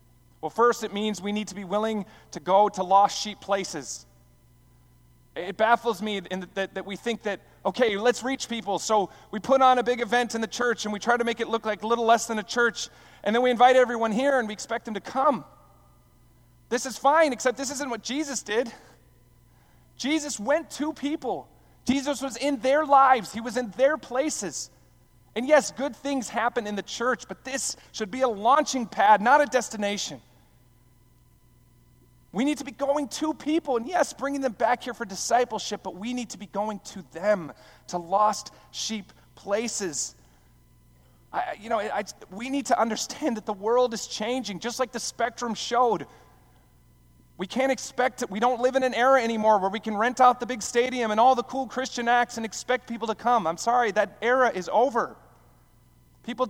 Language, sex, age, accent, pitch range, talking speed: English, male, 30-49, American, 200-255 Hz, 195 wpm